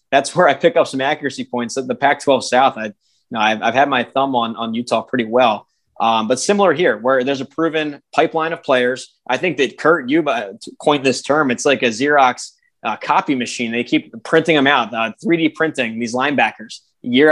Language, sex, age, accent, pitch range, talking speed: English, male, 20-39, American, 125-150 Hz, 210 wpm